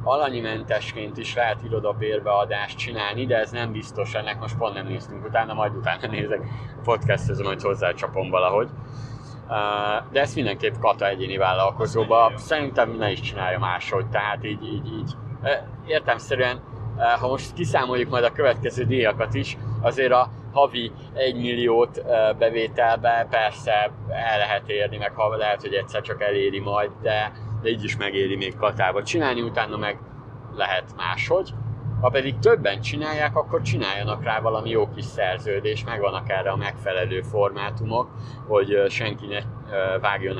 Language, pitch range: Hungarian, 105-125 Hz